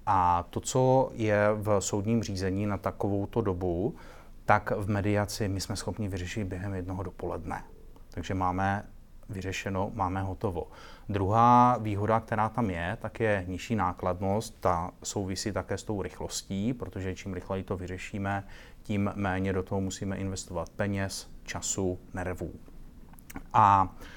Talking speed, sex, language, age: 135 wpm, male, Czech, 30-49